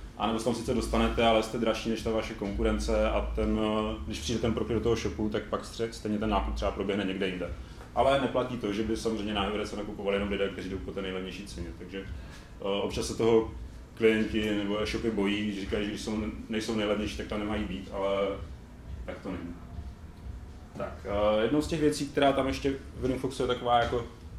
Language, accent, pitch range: Czech, native, 95-115 Hz